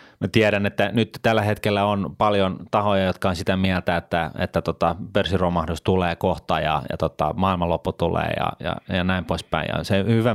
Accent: native